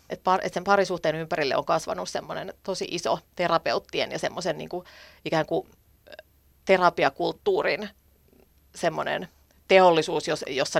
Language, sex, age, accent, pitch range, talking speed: Finnish, female, 30-49, native, 160-195 Hz, 100 wpm